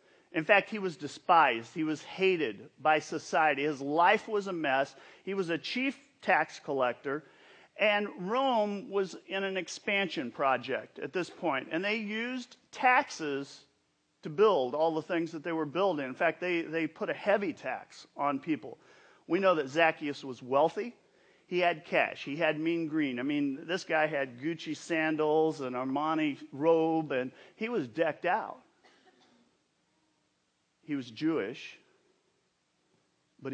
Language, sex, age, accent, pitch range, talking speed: English, male, 40-59, American, 150-205 Hz, 155 wpm